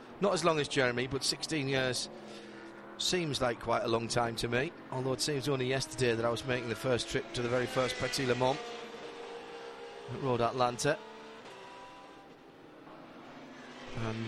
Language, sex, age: English, male, 30-49